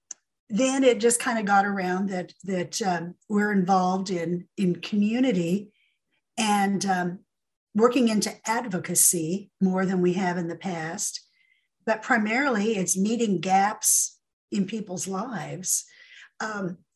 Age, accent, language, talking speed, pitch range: 50-69, American, English, 125 wpm, 180-235 Hz